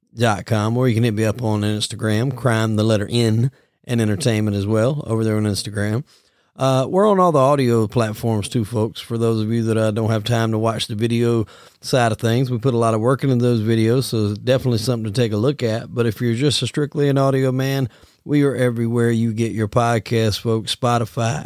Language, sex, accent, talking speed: English, male, American, 225 wpm